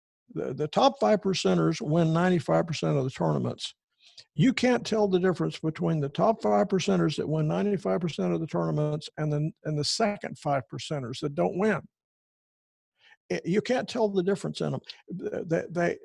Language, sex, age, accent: English, male, 60-79, American